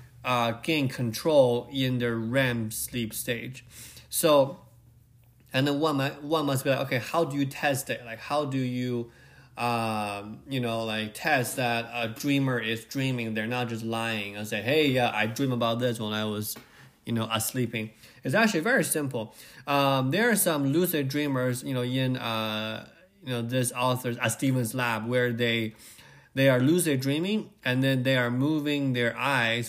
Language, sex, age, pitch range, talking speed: English, male, 20-39, 115-135 Hz, 185 wpm